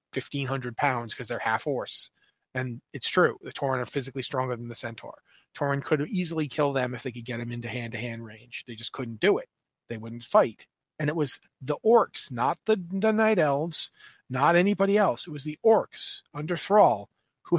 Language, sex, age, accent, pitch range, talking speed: English, male, 40-59, American, 135-195 Hz, 200 wpm